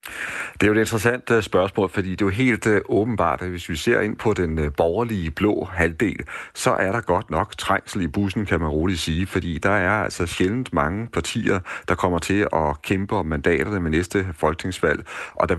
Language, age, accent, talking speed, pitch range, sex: Danish, 40-59, native, 205 wpm, 75-95 Hz, male